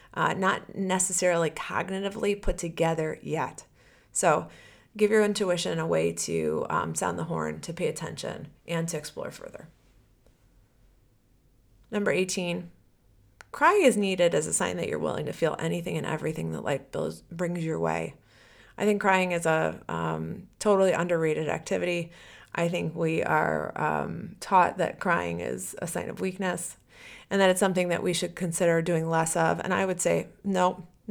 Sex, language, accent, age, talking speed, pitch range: female, English, American, 30-49, 160 wpm, 160-185 Hz